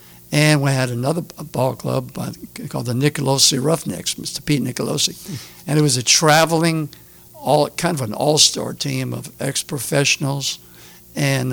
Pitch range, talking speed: 115-155 Hz, 140 wpm